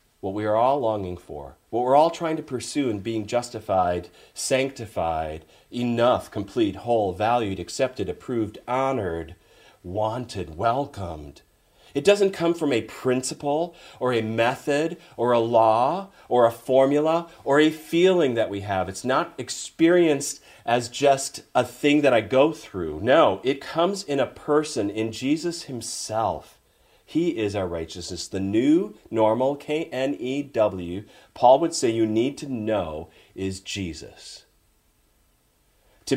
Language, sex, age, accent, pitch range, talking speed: English, male, 40-59, American, 105-140 Hz, 140 wpm